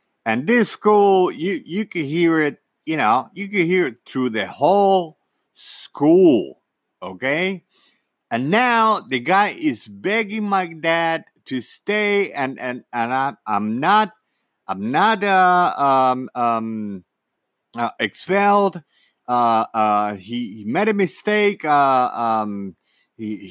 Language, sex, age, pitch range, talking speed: English, male, 50-69, 135-215 Hz, 130 wpm